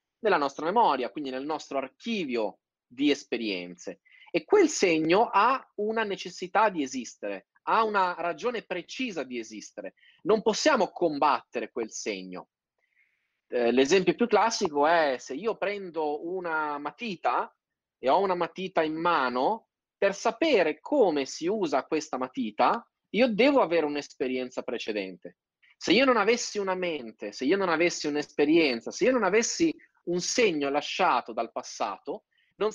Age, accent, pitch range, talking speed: 30-49, native, 145-225 Hz, 140 wpm